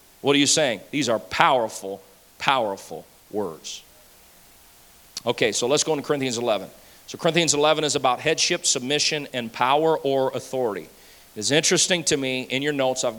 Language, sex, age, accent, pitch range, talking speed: English, male, 40-59, American, 125-165 Hz, 160 wpm